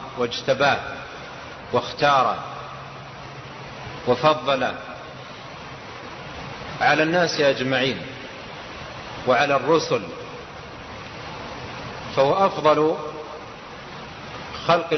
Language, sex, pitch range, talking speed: Arabic, male, 125-155 Hz, 45 wpm